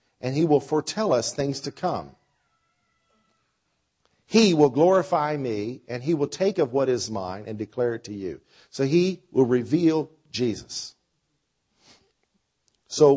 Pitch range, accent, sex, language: 105-155 Hz, American, male, English